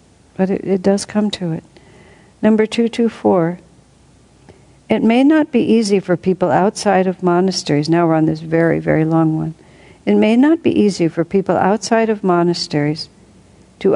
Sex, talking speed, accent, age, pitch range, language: female, 170 wpm, American, 60-79, 165-210 Hz, English